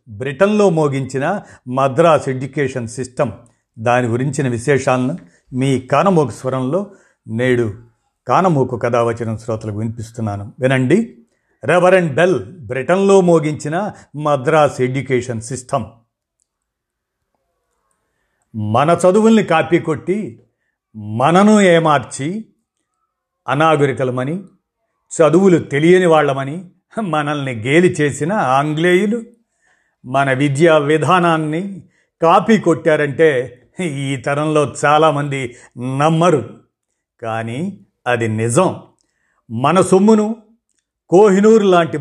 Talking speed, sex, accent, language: 80 wpm, male, native, Telugu